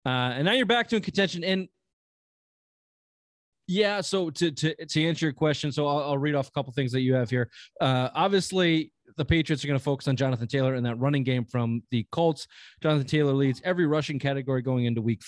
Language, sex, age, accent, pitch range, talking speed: English, male, 20-39, American, 125-160 Hz, 220 wpm